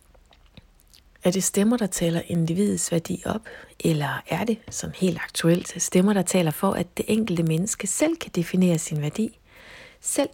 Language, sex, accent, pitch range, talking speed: Danish, female, native, 170-225 Hz, 165 wpm